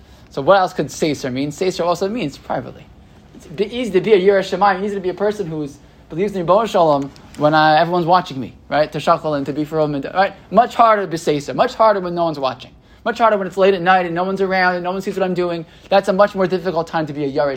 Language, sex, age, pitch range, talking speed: English, male, 20-39, 150-195 Hz, 285 wpm